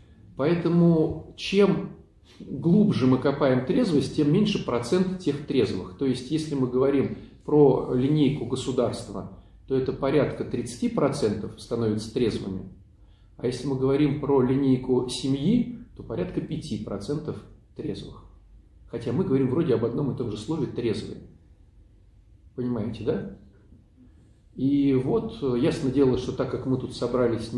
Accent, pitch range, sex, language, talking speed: native, 110-145 Hz, male, Russian, 130 wpm